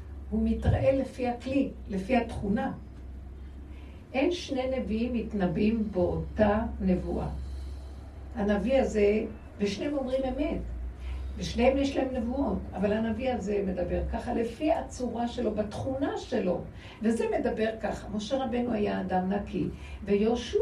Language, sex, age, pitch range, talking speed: Hebrew, female, 60-79, 195-260 Hz, 115 wpm